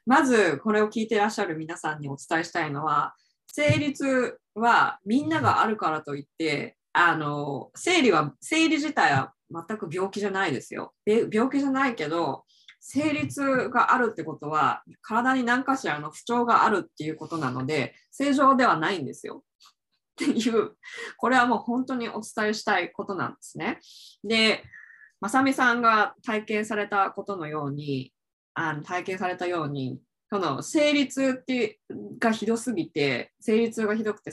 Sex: female